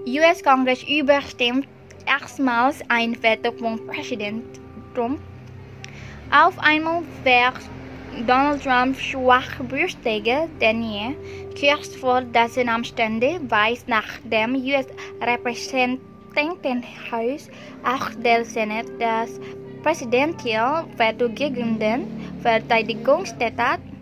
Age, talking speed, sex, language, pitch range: 10-29, 95 wpm, female, English, 220-265 Hz